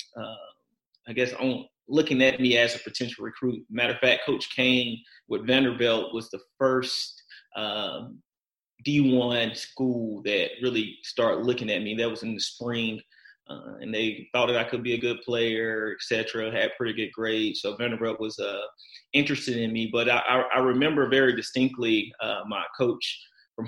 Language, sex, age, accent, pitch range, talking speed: English, male, 30-49, American, 115-125 Hz, 170 wpm